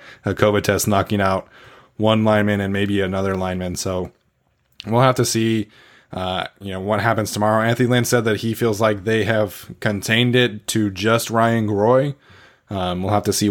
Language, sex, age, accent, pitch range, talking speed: English, male, 20-39, American, 95-110 Hz, 185 wpm